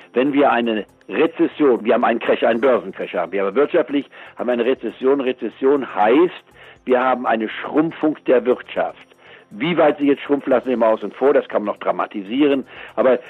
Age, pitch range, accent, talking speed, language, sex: 60-79, 125-150 Hz, German, 190 wpm, German, male